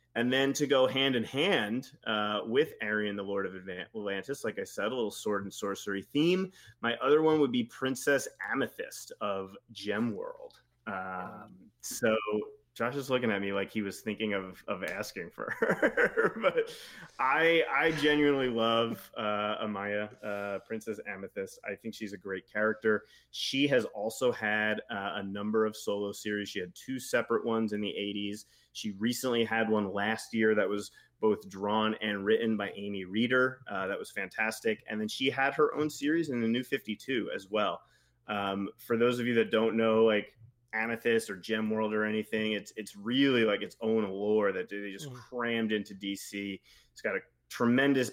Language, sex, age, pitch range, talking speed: English, male, 30-49, 105-125 Hz, 180 wpm